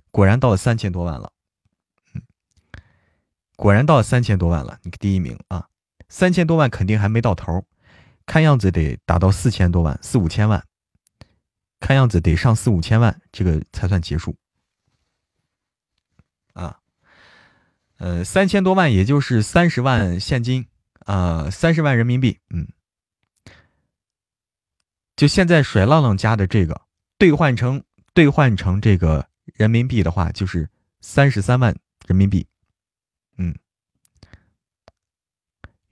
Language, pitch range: Chinese, 90-125 Hz